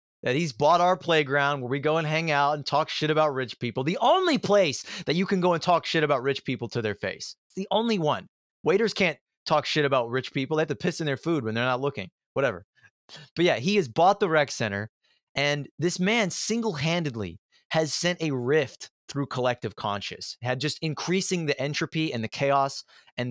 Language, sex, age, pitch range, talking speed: English, male, 30-49, 115-155 Hz, 215 wpm